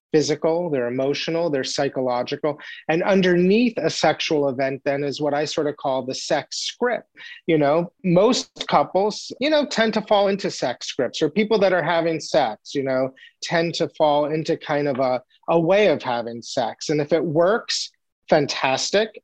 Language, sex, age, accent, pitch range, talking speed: English, male, 30-49, American, 150-200 Hz, 180 wpm